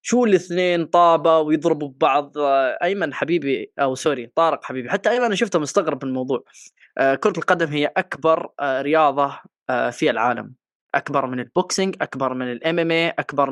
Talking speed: 150 wpm